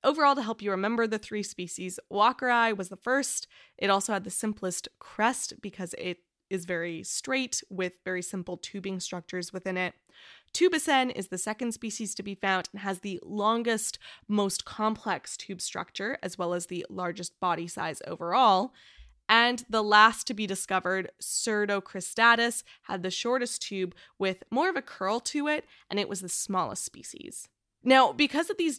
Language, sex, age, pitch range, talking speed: English, female, 20-39, 185-225 Hz, 170 wpm